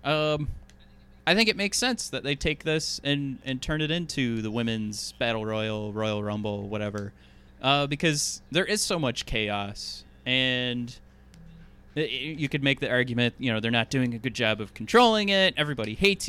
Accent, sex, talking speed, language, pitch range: American, male, 185 wpm, English, 115-165 Hz